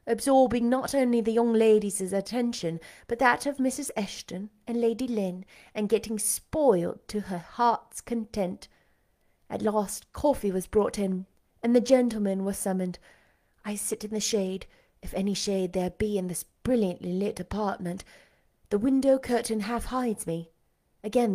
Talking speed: 150 wpm